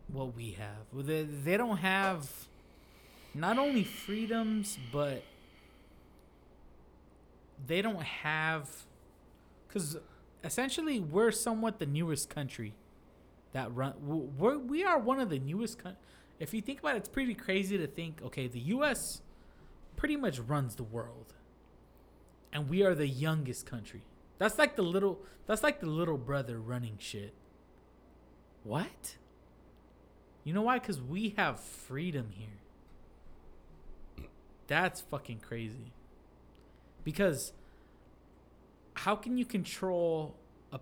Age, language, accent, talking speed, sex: 20-39, English, American, 125 wpm, male